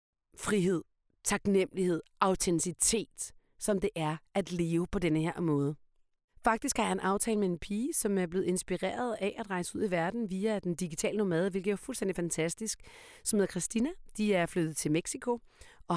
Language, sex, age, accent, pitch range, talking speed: Danish, female, 40-59, native, 170-220 Hz, 175 wpm